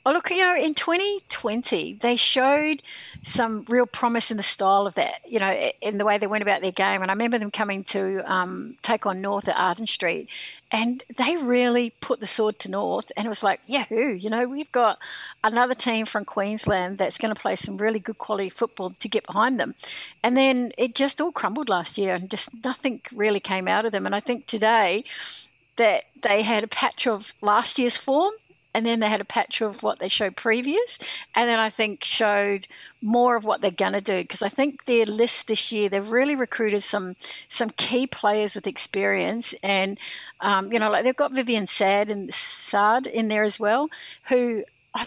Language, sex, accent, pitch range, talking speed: English, female, Australian, 205-245 Hz, 210 wpm